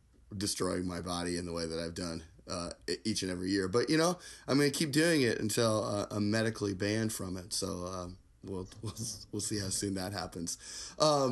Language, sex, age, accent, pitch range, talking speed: English, male, 20-39, American, 95-130 Hz, 215 wpm